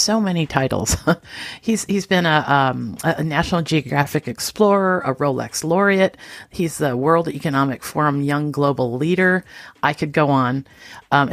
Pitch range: 135-175 Hz